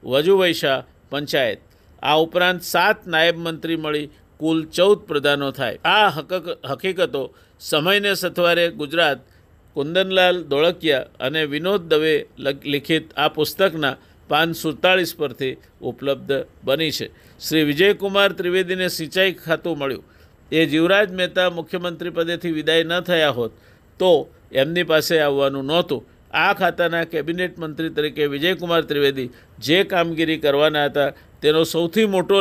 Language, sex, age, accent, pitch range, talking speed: Gujarati, male, 50-69, native, 145-180 Hz, 115 wpm